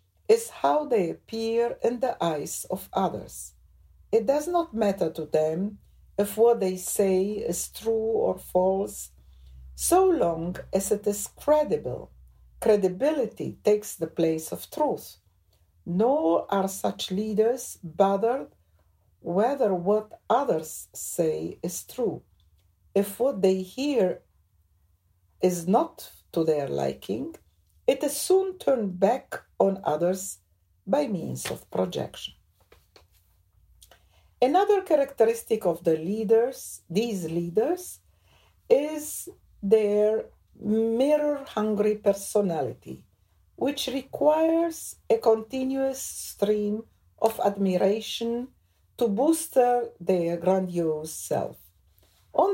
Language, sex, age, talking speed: English, female, 60-79, 105 wpm